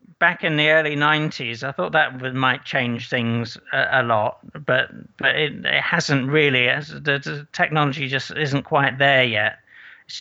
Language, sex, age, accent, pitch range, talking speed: English, male, 50-69, British, 130-155 Hz, 190 wpm